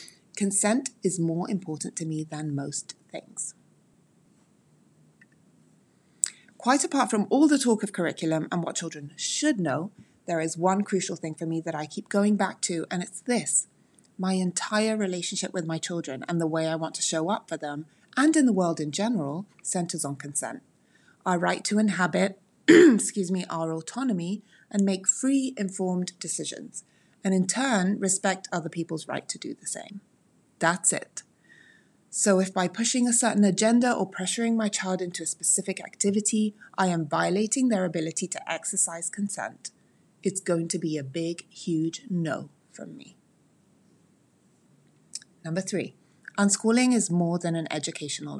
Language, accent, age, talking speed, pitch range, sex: English, British, 30-49, 160 wpm, 165-205 Hz, female